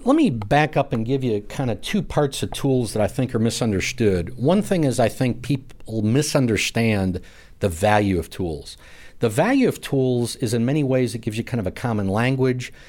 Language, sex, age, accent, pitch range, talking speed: English, male, 50-69, American, 100-125 Hz, 210 wpm